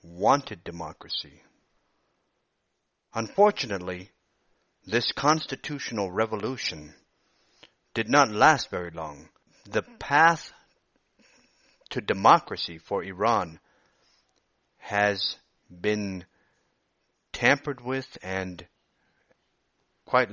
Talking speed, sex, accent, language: 70 wpm, male, American, English